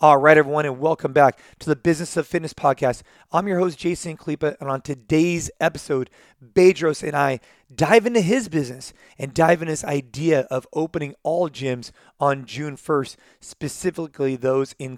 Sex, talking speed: male, 170 wpm